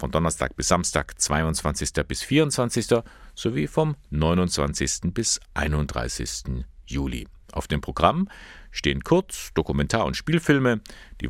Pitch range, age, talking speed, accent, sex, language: 70-100 Hz, 50-69, 115 wpm, German, male, German